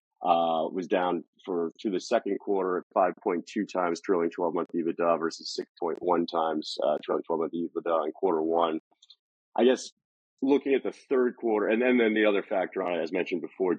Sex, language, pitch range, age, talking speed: male, English, 80-105 Hz, 30-49, 190 wpm